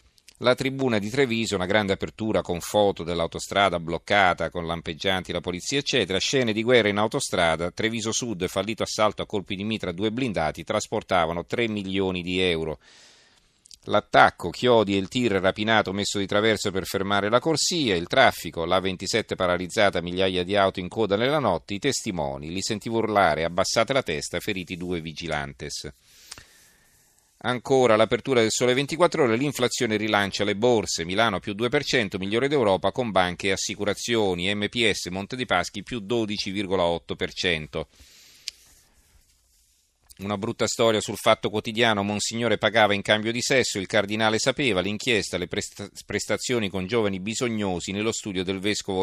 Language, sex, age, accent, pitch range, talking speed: Italian, male, 40-59, native, 90-115 Hz, 150 wpm